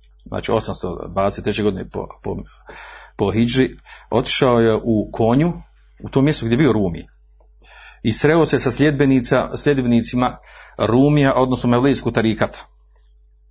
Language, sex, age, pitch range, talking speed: Croatian, male, 50-69, 105-135 Hz, 115 wpm